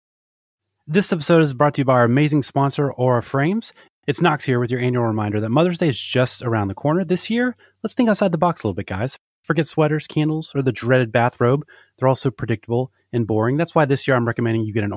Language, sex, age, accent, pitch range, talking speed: English, male, 30-49, American, 110-145 Hz, 240 wpm